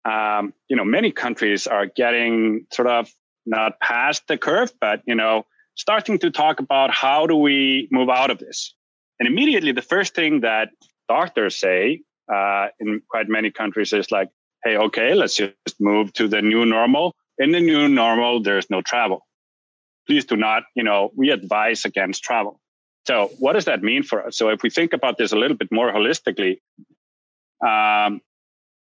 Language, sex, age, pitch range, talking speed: English, male, 30-49, 105-140 Hz, 180 wpm